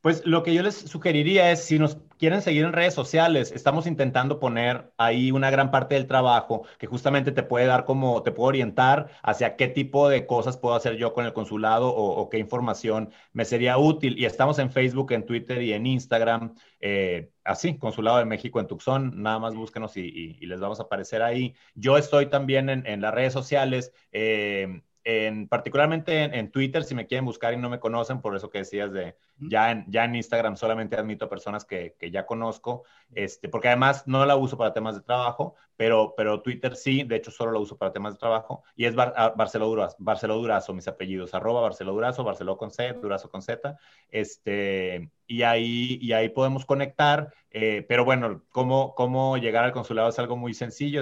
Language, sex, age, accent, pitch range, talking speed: Spanish, male, 30-49, Mexican, 110-135 Hz, 205 wpm